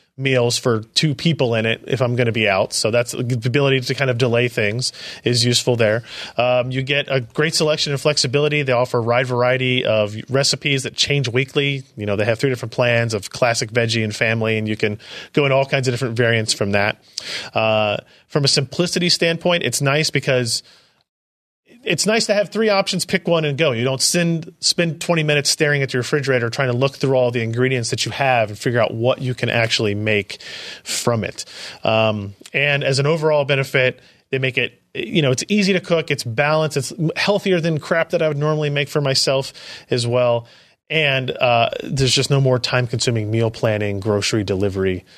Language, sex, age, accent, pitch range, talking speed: English, male, 30-49, American, 115-150 Hz, 205 wpm